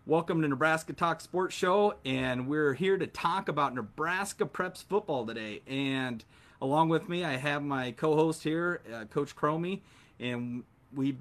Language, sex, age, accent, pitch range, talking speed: English, male, 30-49, American, 125-155 Hz, 160 wpm